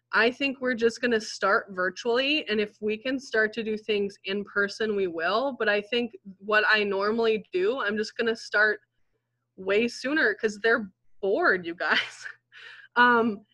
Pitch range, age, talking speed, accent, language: 200-245 Hz, 20-39, 175 wpm, American, English